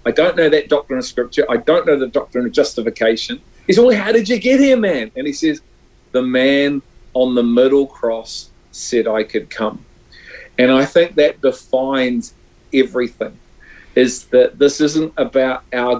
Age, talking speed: 40-59, 180 wpm